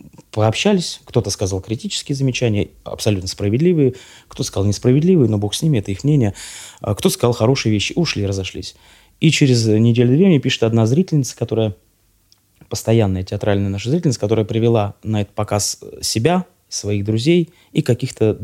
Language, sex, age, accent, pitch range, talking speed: Russian, male, 20-39, native, 100-125 Hz, 145 wpm